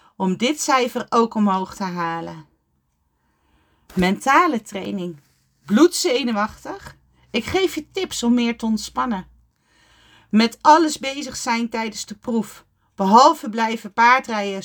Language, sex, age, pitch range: Dutch, female, 40-59, 190-270 Hz